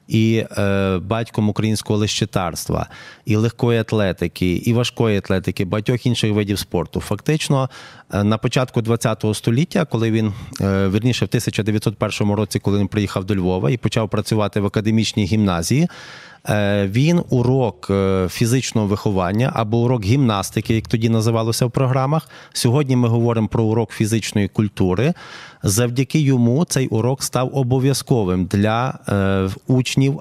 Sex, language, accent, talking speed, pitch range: male, Ukrainian, native, 130 wpm, 105-130 Hz